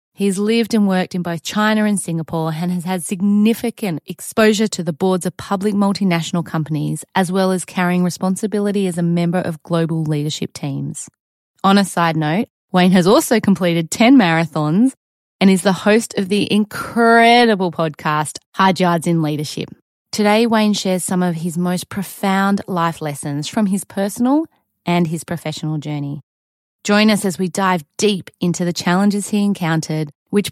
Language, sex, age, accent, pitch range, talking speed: English, female, 20-39, Australian, 165-205 Hz, 165 wpm